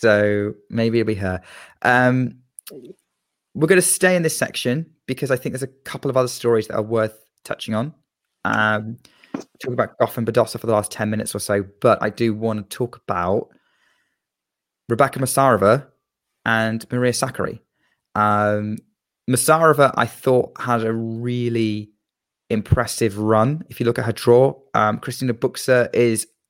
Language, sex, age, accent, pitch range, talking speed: English, male, 20-39, British, 110-125 Hz, 160 wpm